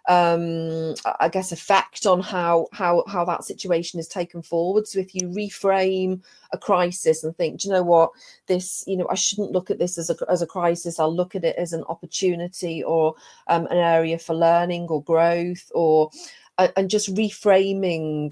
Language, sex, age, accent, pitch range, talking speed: English, female, 30-49, British, 170-190 Hz, 185 wpm